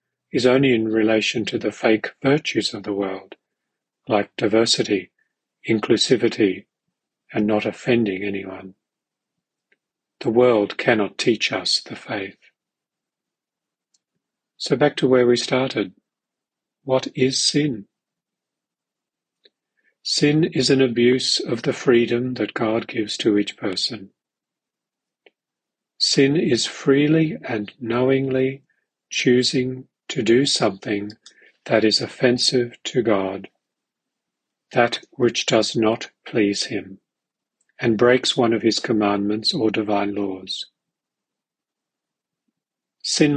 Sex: male